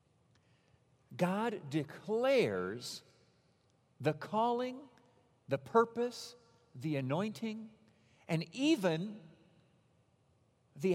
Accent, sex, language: American, male, English